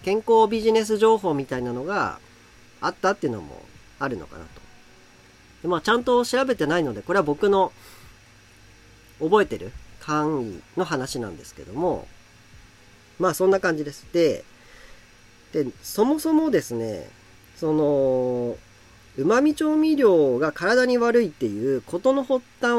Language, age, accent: Japanese, 40-59, native